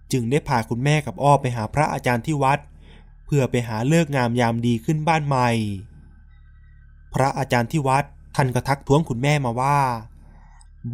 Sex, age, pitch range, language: male, 20-39, 105-145 Hz, Thai